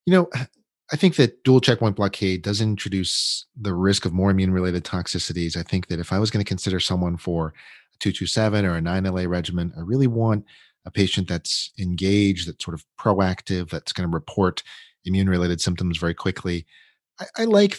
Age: 30-49